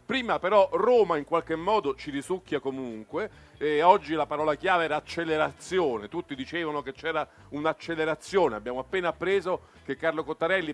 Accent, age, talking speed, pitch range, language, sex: native, 50-69, 150 wpm, 140-190 Hz, Italian, male